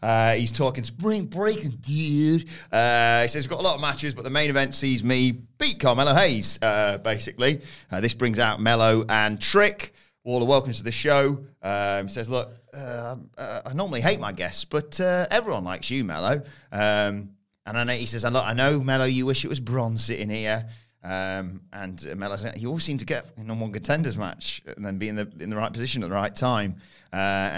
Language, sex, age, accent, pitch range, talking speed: English, male, 30-49, British, 100-140 Hz, 220 wpm